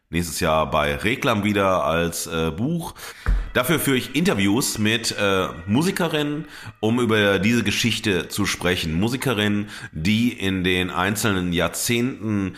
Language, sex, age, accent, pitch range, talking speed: German, male, 30-49, German, 85-110 Hz, 130 wpm